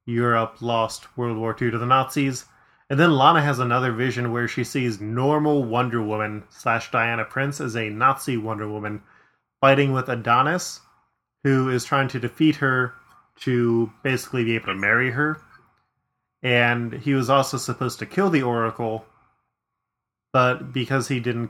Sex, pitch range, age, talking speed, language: male, 115-140 Hz, 20-39, 160 wpm, English